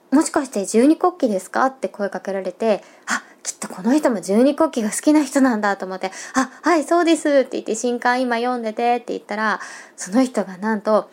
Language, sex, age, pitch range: Japanese, female, 20-39, 200-260 Hz